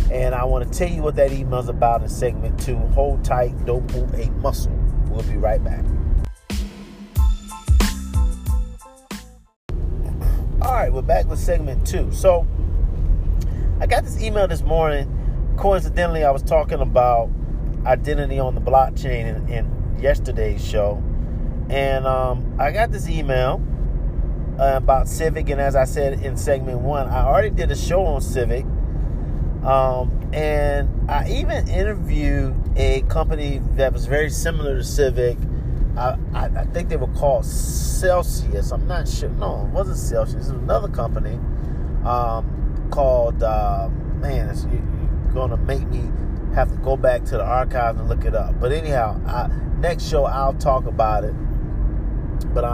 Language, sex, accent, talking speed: English, male, American, 155 wpm